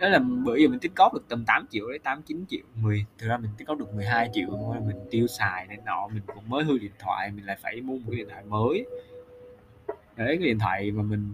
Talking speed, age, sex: 270 wpm, 20-39, male